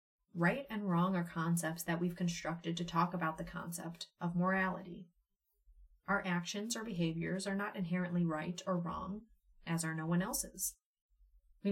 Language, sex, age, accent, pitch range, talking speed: English, female, 30-49, American, 170-200 Hz, 160 wpm